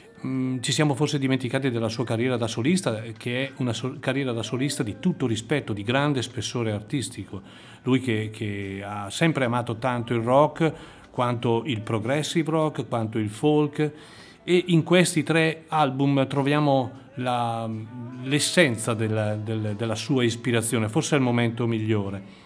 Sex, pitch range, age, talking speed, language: male, 115-145 Hz, 40-59, 155 wpm, Italian